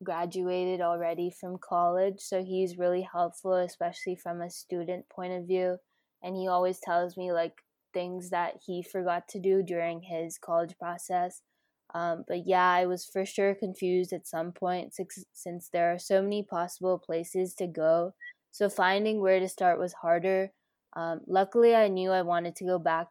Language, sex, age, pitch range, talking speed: English, female, 10-29, 170-185 Hz, 175 wpm